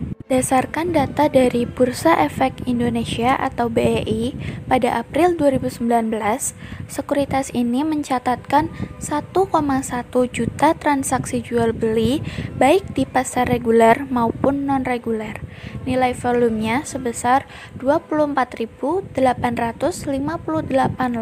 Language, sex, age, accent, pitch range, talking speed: Indonesian, female, 20-39, native, 235-280 Hz, 80 wpm